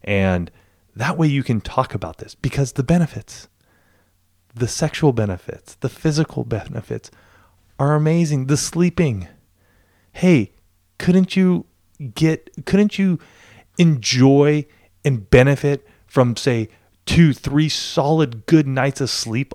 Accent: American